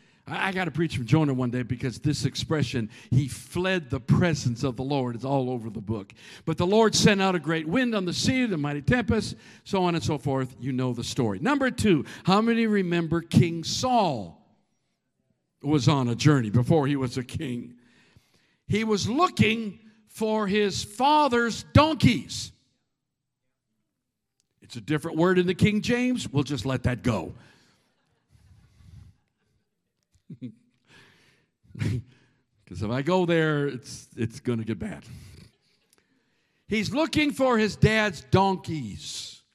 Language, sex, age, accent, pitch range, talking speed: English, male, 50-69, American, 135-205 Hz, 150 wpm